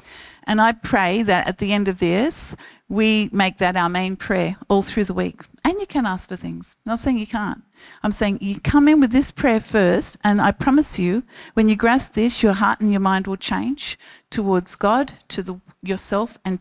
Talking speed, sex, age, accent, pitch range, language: 215 wpm, female, 50-69, Australian, 185-230 Hz, English